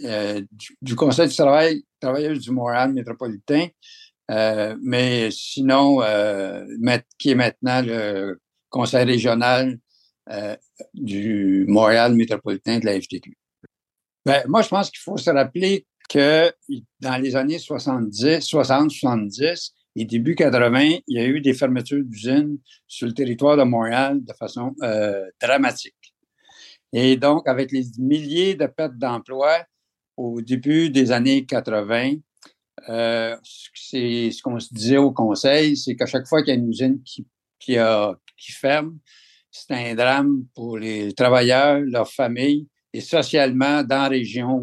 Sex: male